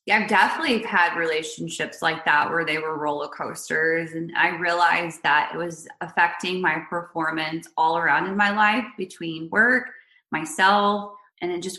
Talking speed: 165 wpm